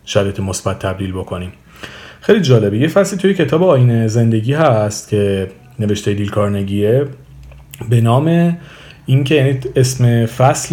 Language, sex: Persian, male